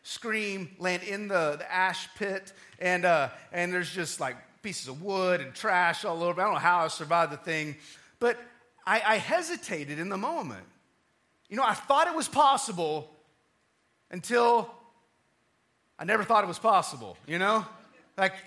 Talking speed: 170 wpm